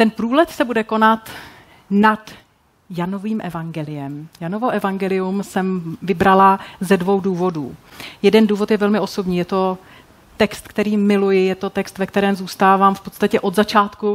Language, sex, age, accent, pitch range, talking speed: Czech, female, 30-49, native, 185-210 Hz, 150 wpm